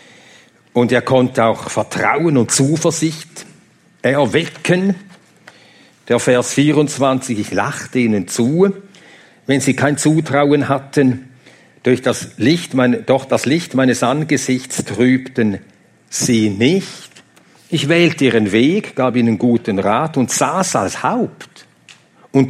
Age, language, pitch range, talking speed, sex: 50-69, German, 120-160 Hz, 110 wpm, male